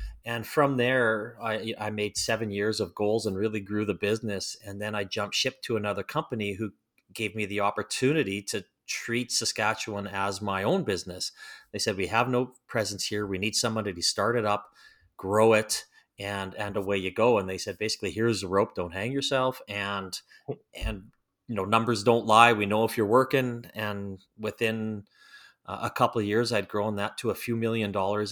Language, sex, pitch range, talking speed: English, male, 100-115 Hz, 195 wpm